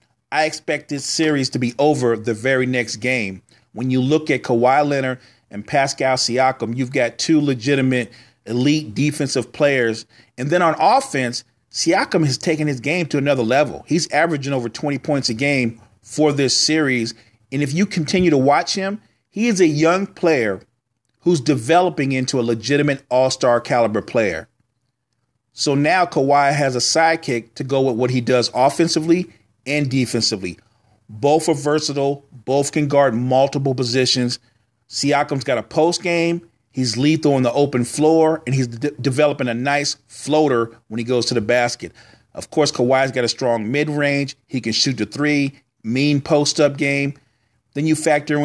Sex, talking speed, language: male, 165 wpm, English